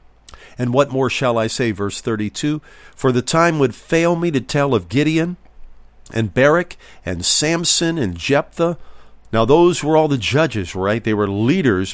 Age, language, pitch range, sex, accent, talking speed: 50-69, English, 105-145 Hz, male, American, 170 wpm